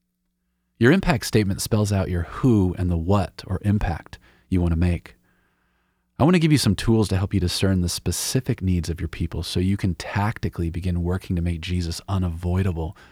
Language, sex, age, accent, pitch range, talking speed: English, male, 40-59, American, 80-100 Hz, 190 wpm